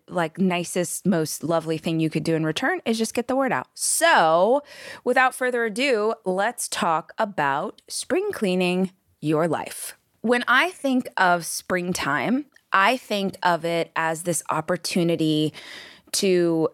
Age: 20-39